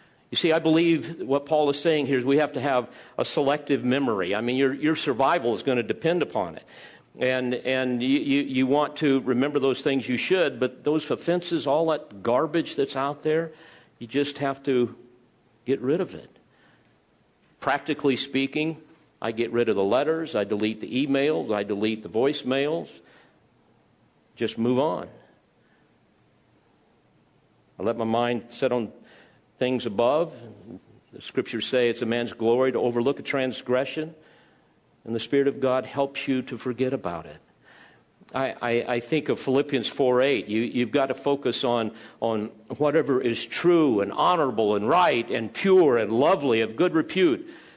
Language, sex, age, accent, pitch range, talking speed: English, male, 50-69, American, 125-155 Hz, 165 wpm